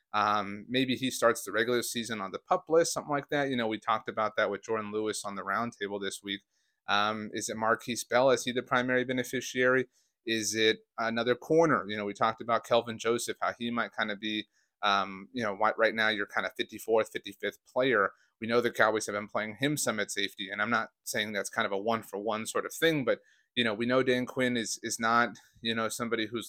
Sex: male